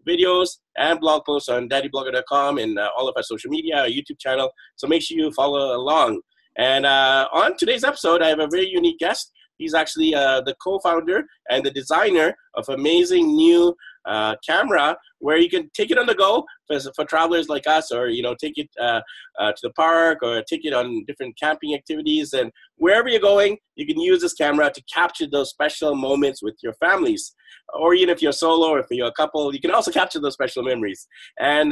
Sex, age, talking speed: male, 30-49, 210 wpm